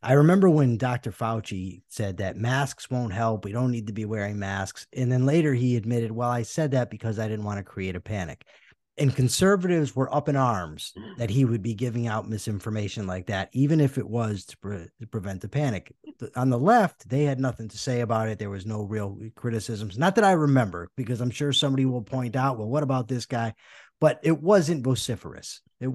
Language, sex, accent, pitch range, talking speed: English, male, American, 110-150 Hz, 215 wpm